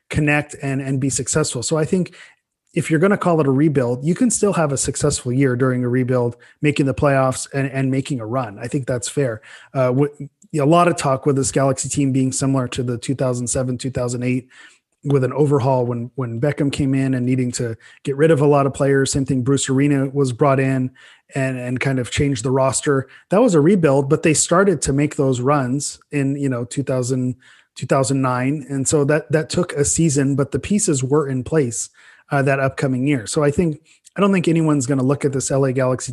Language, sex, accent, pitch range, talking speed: English, male, Canadian, 130-145 Hz, 225 wpm